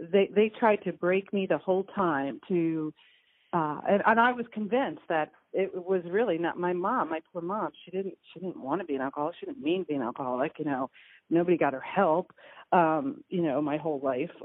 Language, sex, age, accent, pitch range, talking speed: English, female, 40-59, American, 145-185 Hz, 225 wpm